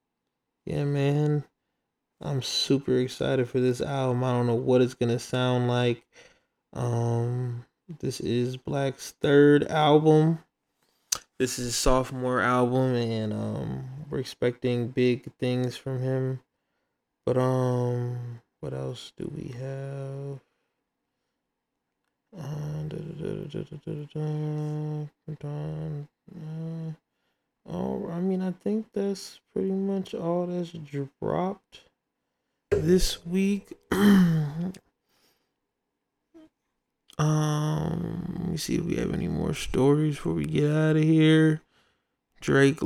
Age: 20-39